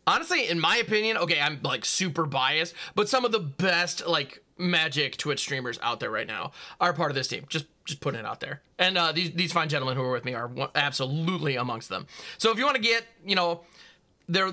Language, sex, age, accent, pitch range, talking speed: English, male, 30-49, American, 155-210 Hz, 230 wpm